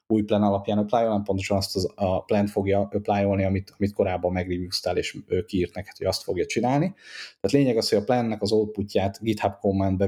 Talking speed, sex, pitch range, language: 190 wpm, male, 95-105 Hz, Hungarian